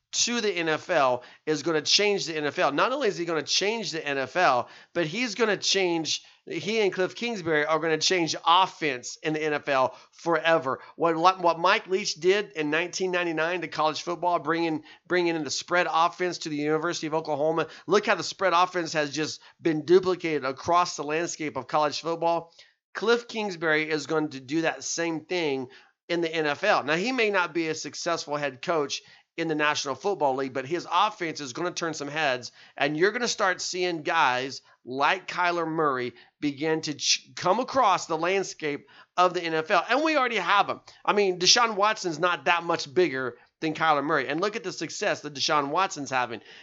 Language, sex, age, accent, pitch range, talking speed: English, male, 40-59, American, 150-180 Hz, 195 wpm